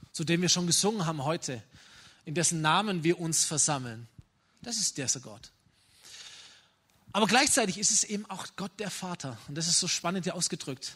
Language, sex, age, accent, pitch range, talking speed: German, male, 20-39, German, 150-205 Hz, 185 wpm